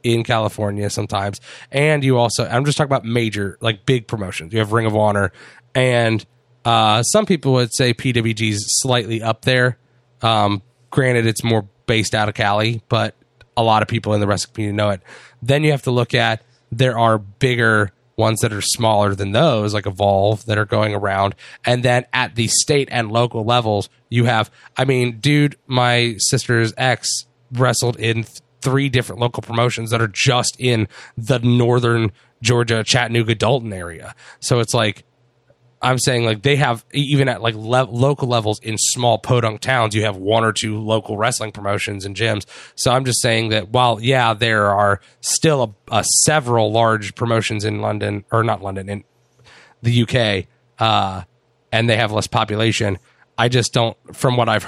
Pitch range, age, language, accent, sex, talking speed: 110-125 Hz, 30-49, English, American, male, 180 wpm